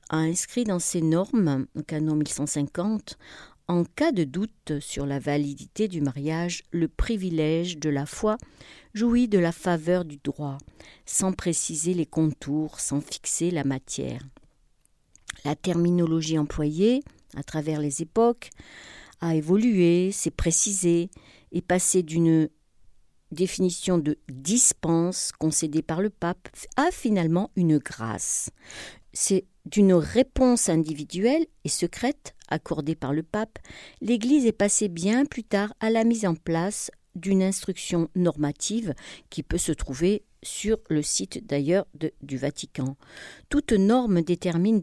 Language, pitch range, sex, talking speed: French, 155-200 Hz, female, 130 wpm